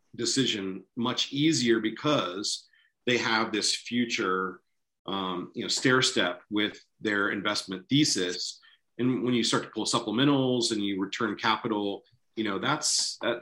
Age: 40-59